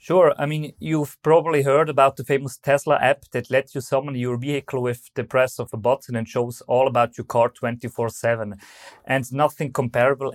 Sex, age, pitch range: male, 30-49, 120-140 Hz